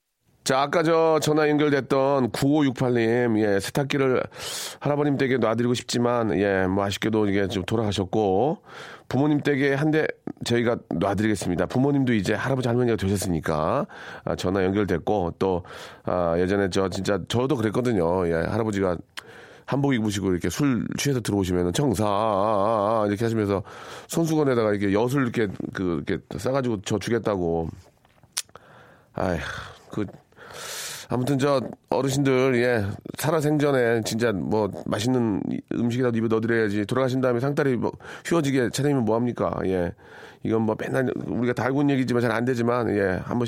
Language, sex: Korean, male